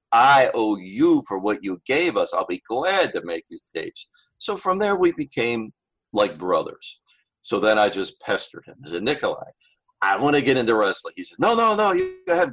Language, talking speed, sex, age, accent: English, 210 wpm, male, 50-69, American